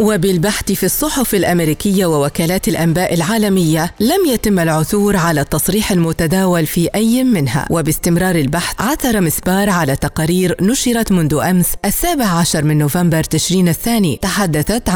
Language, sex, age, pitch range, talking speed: Arabic, female, 40-59, 165-205 Hz, 130 wpm